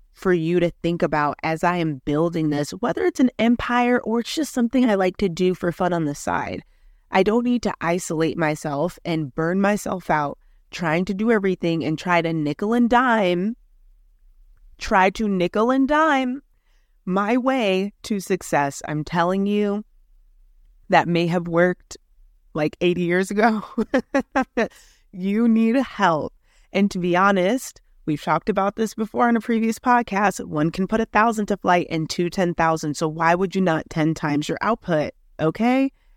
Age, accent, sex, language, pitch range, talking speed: 20-39, American, female, English, 160-220 Hz, 175 wpm